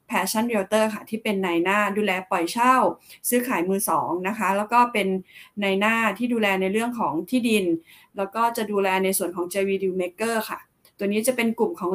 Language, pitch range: Thai, 190-225 Hz